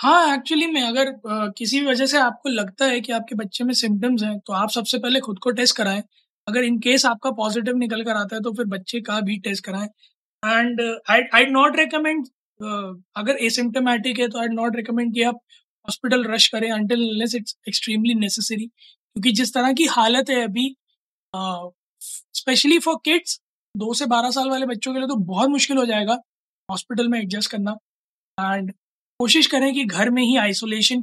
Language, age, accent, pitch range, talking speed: Hindi, 20-39, native, 215-260 Hz, 190 wpm